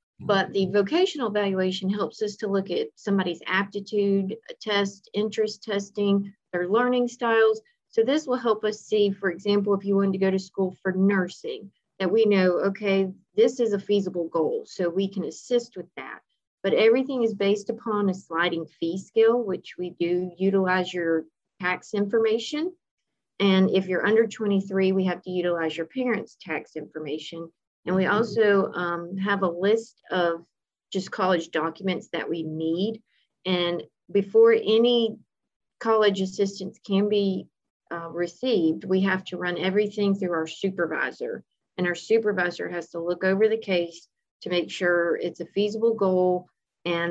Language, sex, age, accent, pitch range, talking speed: English, female, 40-59, American, 180-215 Hz, 160 wpm